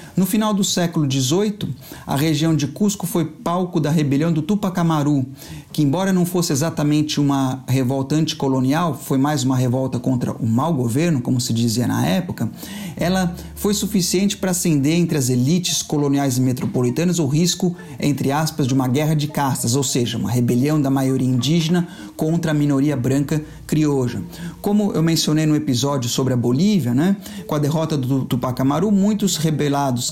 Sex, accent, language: male, Brazilian, Portuguese